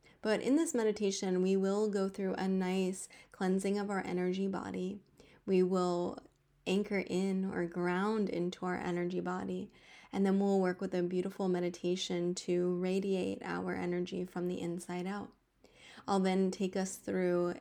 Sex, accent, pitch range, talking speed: female, American, 175-195 Hz, 155 wpm